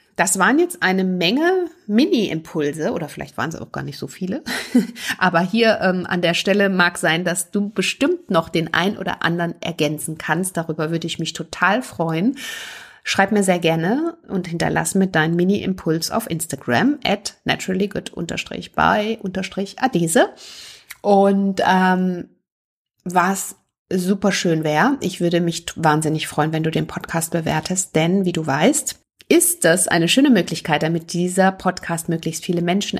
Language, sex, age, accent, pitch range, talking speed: German, female, 30-49, German, 170-205 Hz, 150 wpm